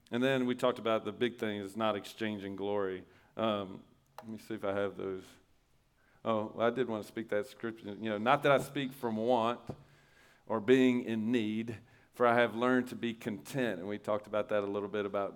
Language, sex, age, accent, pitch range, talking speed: English, male, 40-59, American, 105-120 Hz, 225 wpm